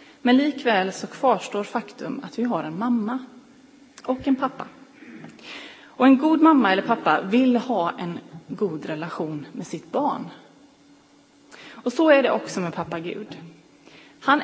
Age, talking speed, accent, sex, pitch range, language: 30-49, 150 wpm, native, female, 170-270 Hz, Swedish